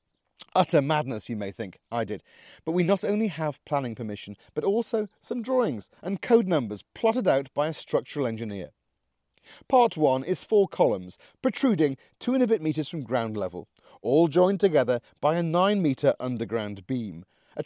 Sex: male